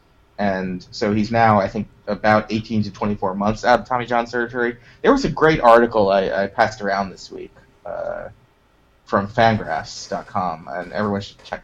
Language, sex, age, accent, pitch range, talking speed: English, male, 20-39, American, 100-120 Hz, 175 wpm